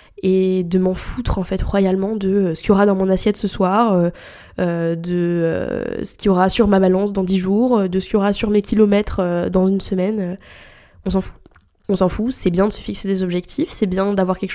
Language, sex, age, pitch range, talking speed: French, female, 10-29, 180-210 Hz, 230 wpm